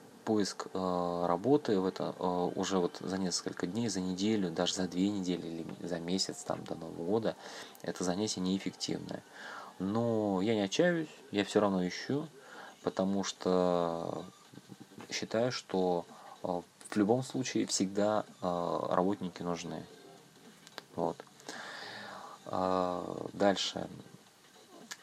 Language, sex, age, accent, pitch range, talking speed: Russian, male, 20-39, native, 90-100 Hz, 110 wpm